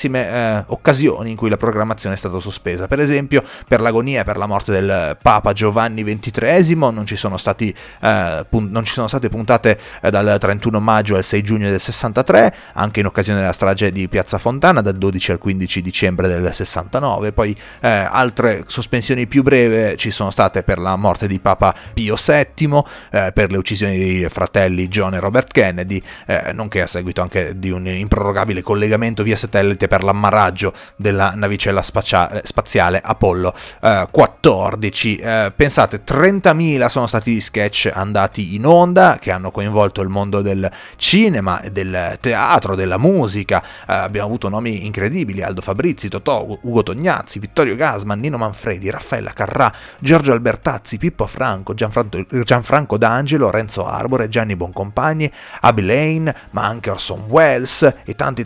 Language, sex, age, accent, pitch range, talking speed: Italian, male, 30-49, native, 95-120 Hz, 160 wpm